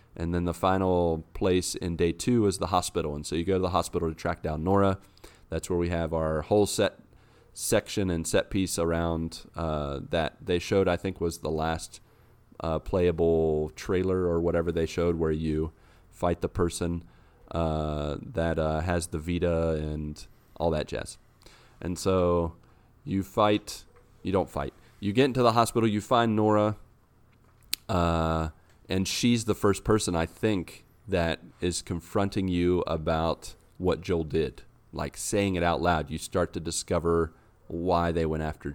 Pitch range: 80-95 Hz